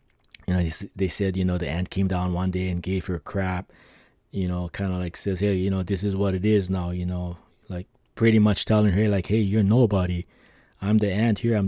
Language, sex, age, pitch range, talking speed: English, male, 20-39, 100-120 Hz, 240 wpm